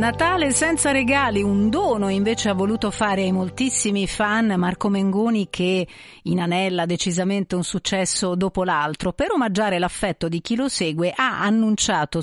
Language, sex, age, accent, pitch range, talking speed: Italian, female, 40-59, native, 175-230 Hz, 150 wpm